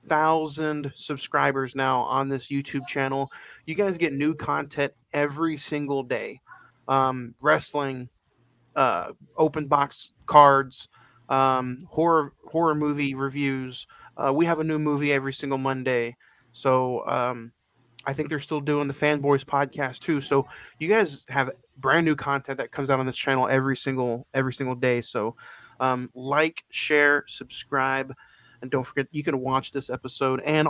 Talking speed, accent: 150 wpm, American